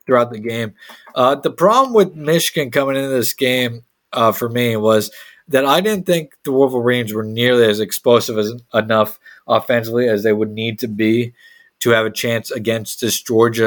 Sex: male